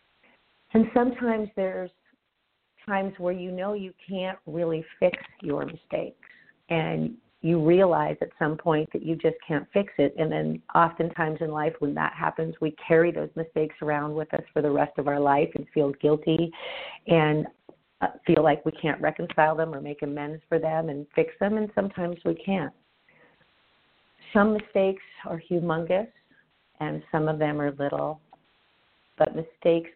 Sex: female